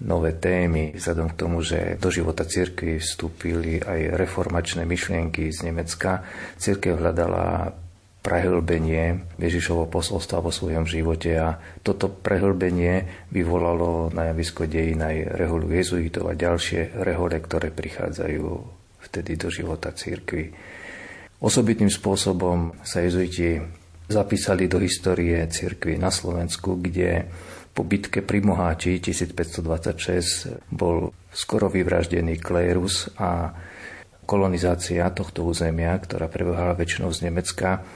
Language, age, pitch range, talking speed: Slovak, 40-59, 85-95 Hz, 110 wpm